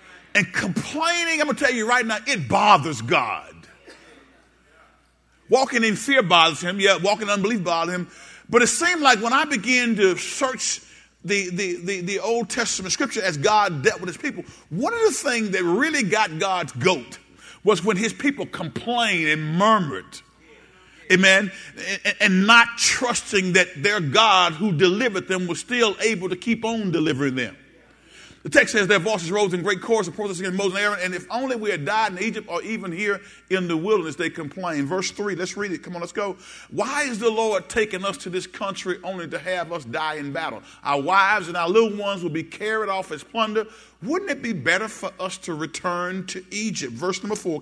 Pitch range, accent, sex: 180-225 Hz, American, male